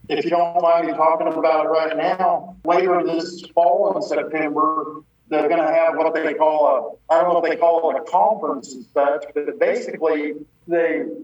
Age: 50-69